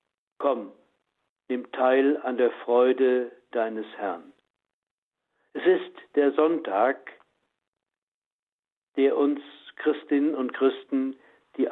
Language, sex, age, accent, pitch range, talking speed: German, male, 60-79, German, 125-150 Hz, 90 wpm